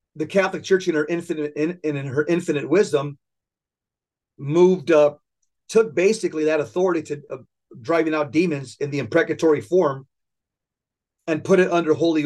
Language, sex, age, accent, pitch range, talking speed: English, male, 40-59, American, 150-185 Hz, 150 wpm